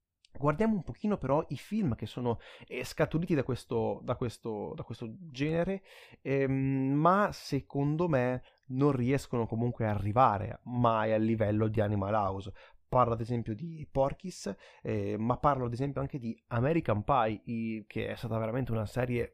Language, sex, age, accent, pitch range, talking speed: Italian, male, 30-49, native, 110-135 Hz, 160 wpm